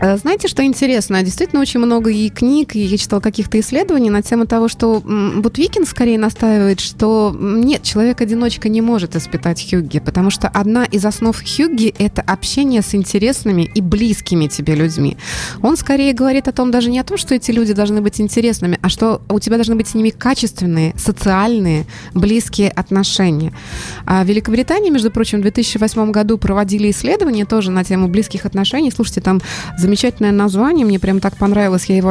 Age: 20-39